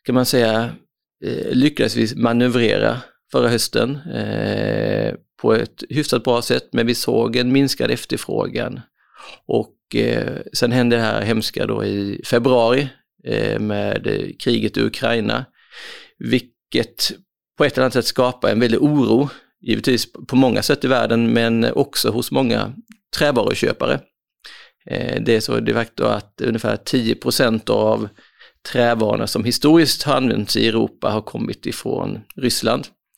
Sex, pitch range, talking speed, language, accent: male, 110-130 Hz, 130 wpm, Swedish, native